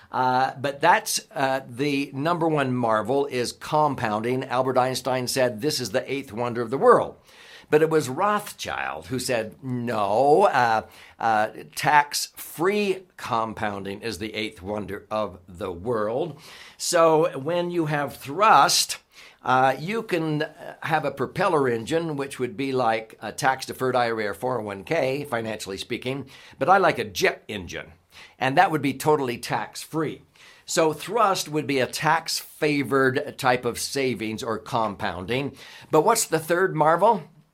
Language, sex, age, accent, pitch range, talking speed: English, male, 60-79, American, 125-155 Hz, 145 wpm